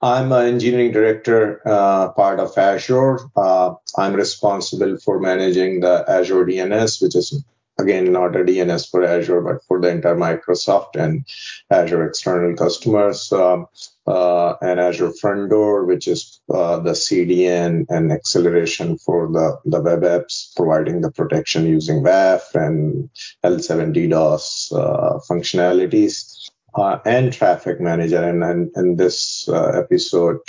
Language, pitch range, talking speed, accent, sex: English, 90-120 Hz, 140 wpm, Indian, male